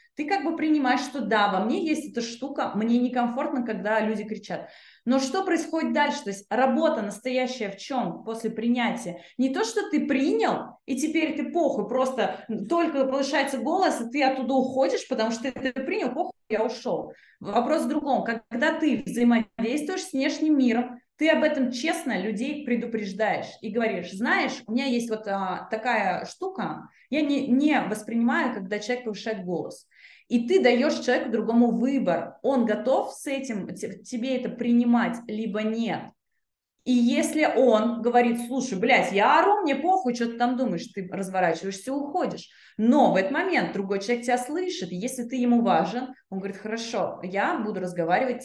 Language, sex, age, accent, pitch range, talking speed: Russian, female, 20-39, native, 220-280 Hz, 165 wpm